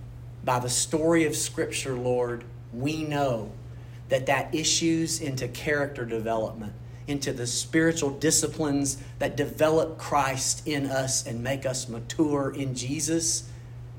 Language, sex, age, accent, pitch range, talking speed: English, male, 40-59, American, 120-155 Hz, 125 wpm